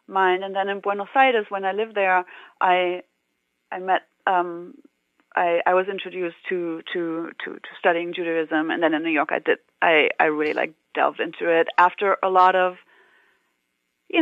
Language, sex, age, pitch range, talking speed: English, female, 30-49, 180-215 Hz, 180 wpm